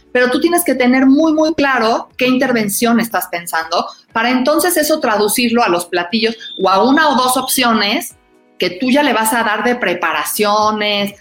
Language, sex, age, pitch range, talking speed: Spanish, female, 40-59, 195-250 Hz, 180 wpm